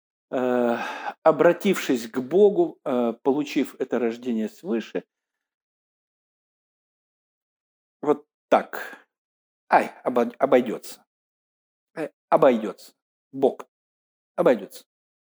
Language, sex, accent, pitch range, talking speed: Russian, male, native, 110-150 Hz, 55 wpm